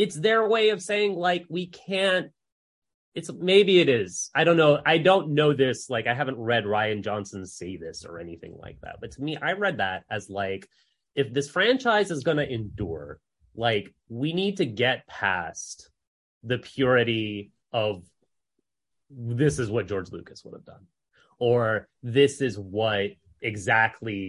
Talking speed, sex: 170 wpm, male